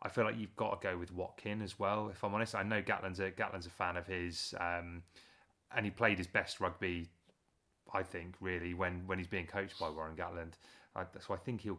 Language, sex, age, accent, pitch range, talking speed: English, male, 30-49, British, 95-110 Hz, 240 wpm